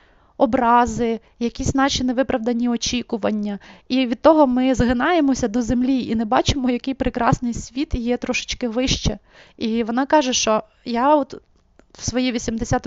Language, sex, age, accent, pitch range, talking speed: Ukrainian, female, 20-39, native, 230-255 Hz, 140 wpm